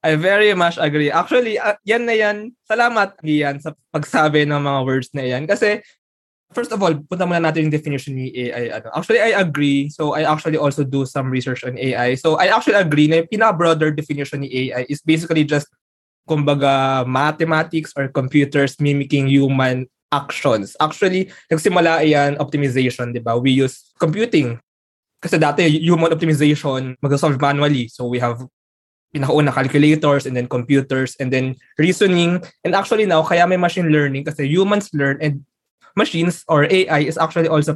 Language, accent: Filipino, native